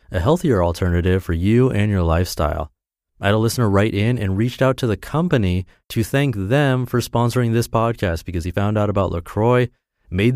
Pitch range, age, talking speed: 90-125 Hz, 30-49, 195 wpm